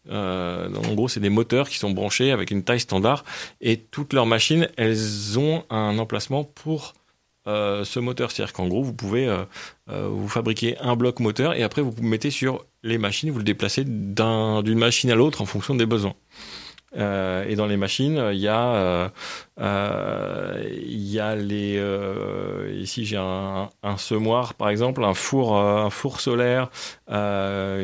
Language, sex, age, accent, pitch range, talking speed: French, male, 30-49, French, 100-125 Hz, 185 wpm